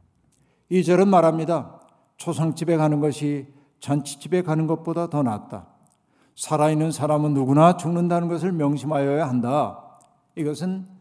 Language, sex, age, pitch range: Korean, male, 50-69, 135-170 Hz